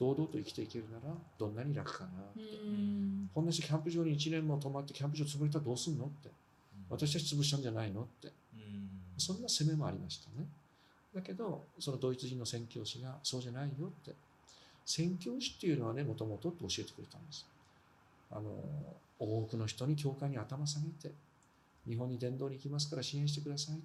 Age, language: 40-59, Japanese